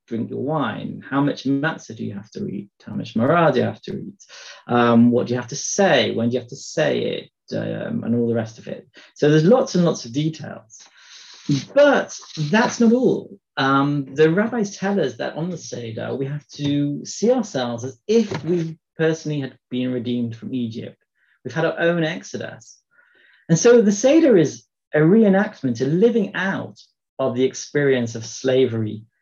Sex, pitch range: male, 120-165 Hz